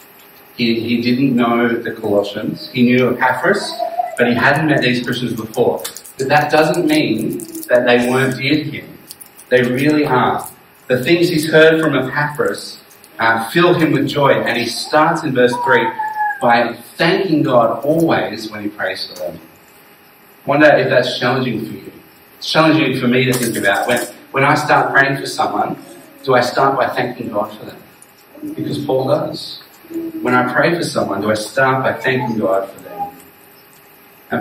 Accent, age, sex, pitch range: Australian, 40-59, male, 120-155 Hz